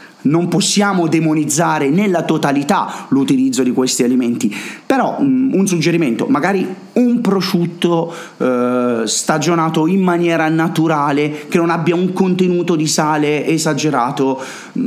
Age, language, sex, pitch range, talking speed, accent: 30-49, Italian, male, 125-180 Hz, 115 wpm, native